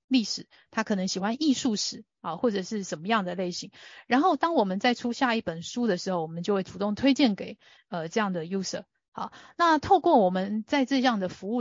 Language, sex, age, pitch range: Chinese, female, 30-49, 190-245 Hz